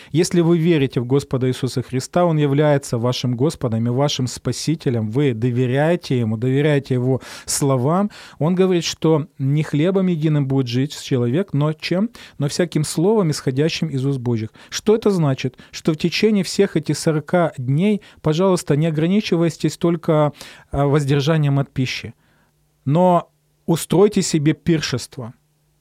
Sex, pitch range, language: male, 135-165 Hz, Ukrainian